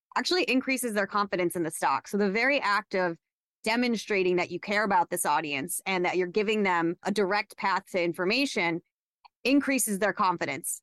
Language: English